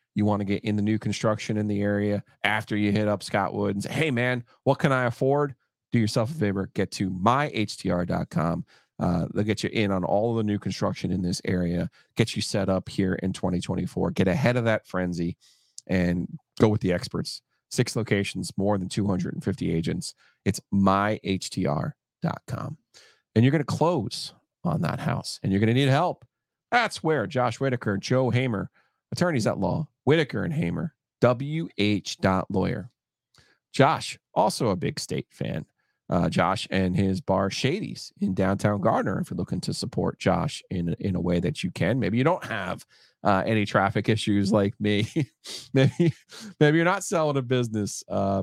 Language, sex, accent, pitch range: English, male, American, 100-130 Hz